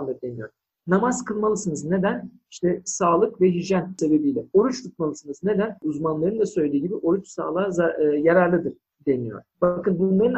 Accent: native